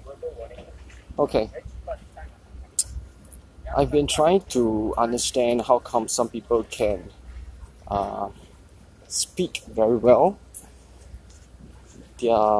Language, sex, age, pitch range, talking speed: English, male, 20-39, 90-125 Hz, 75 wpm